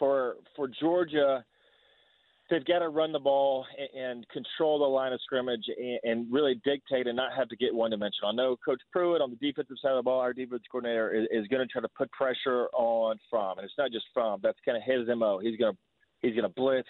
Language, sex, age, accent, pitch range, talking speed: English, male, 30-49, American, 120-140 Hz, 240 wpm